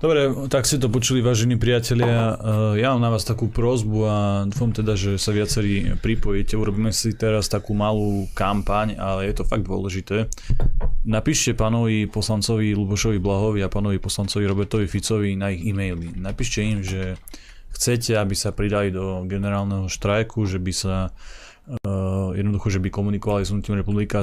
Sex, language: male, Slovak